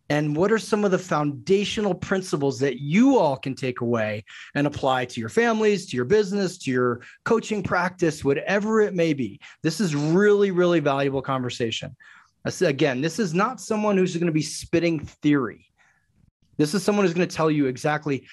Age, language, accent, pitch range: 30-49, English, American, 130-185 Hz